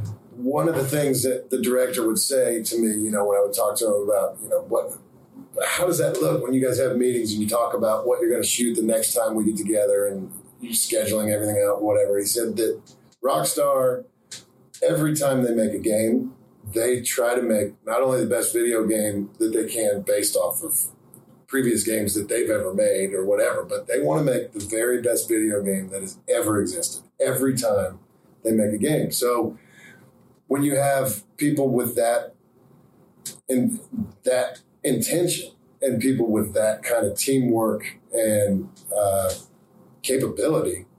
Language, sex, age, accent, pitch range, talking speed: English, male, 40-59, American, 110-170 Hz, 185 wpm